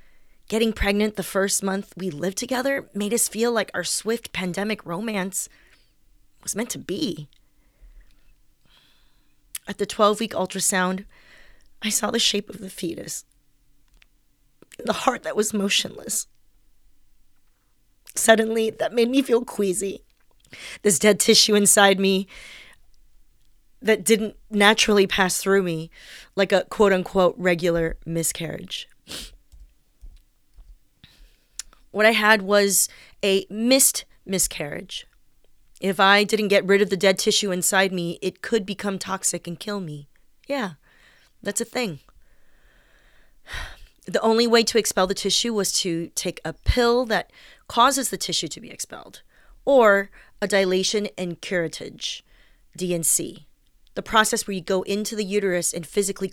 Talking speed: 130 wpm